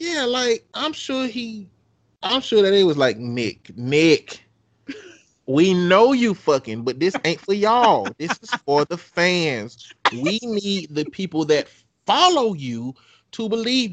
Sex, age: male, 30-49